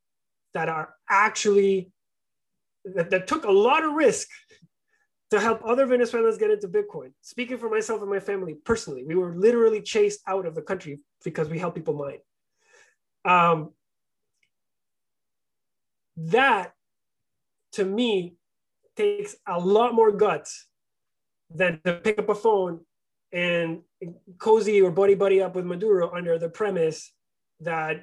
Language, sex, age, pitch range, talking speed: English, male, 30-49, 170-225 Hz, 135 wpm